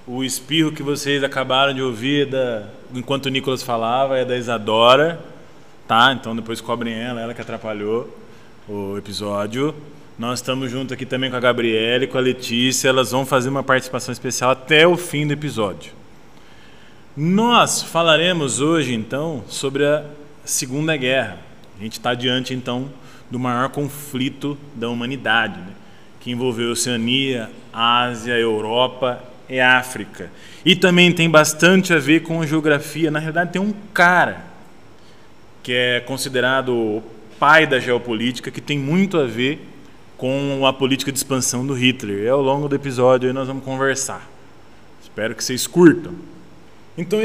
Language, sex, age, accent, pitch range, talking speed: Portuguese, male, 20-39, Brazilian, 120-145 Hz, 155 wpm